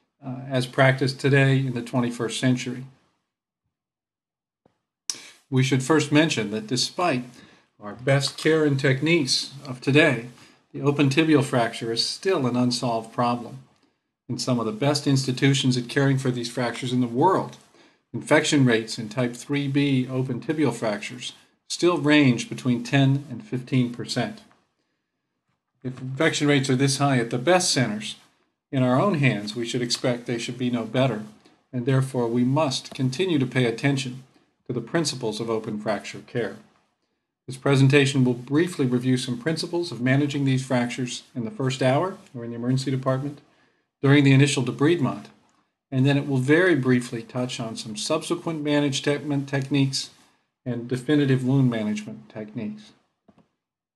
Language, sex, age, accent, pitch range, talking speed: English, male, 50-69, American, 120-140 Hz, 150 wpm